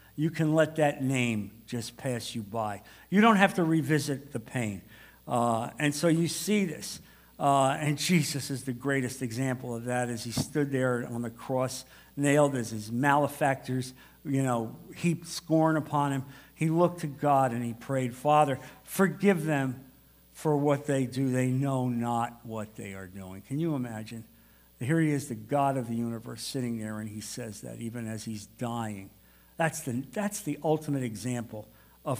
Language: English